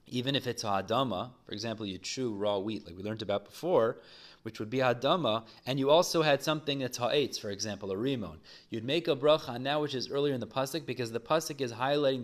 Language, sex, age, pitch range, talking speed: English, male, 30-49, 115-145 Hz, 230 wpm